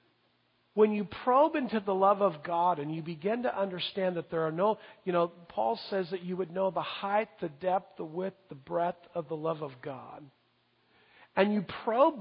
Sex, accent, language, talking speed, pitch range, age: male, American, English, 200 wpm, 165-210 Hz, 50-69